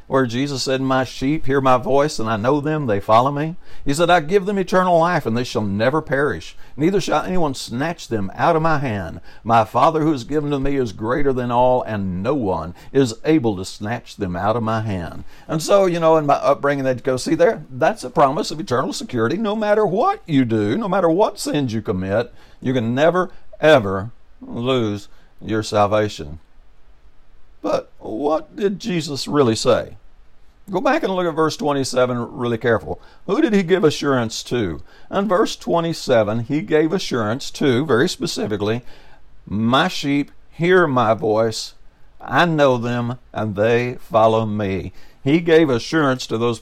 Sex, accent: male, American